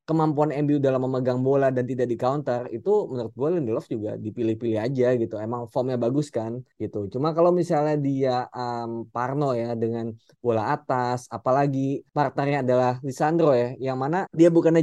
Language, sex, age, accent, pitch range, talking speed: Indonesian, male, 20-39, native, 120-150 Hz, 160 wpm